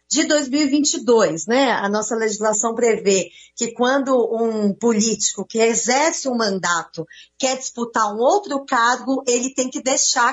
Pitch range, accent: 210-275 Hz, Brazilian